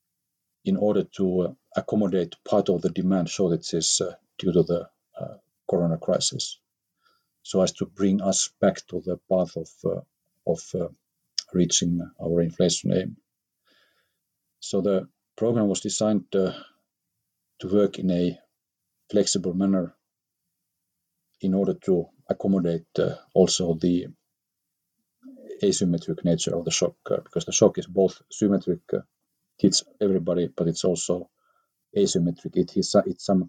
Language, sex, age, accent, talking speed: English, male, 50-69, Finnish, 135 wpm